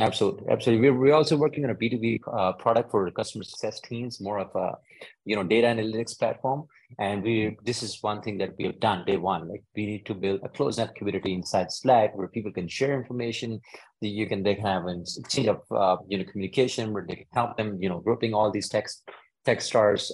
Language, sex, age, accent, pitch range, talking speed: English, male, 30-49, Indian, 95-115 Hz, 230 wpm